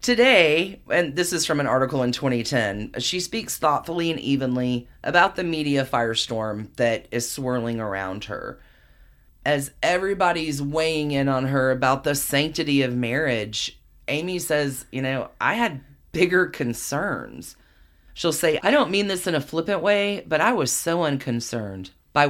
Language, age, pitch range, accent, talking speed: English, 30-49, 120-165 Hz, American, 155 wpm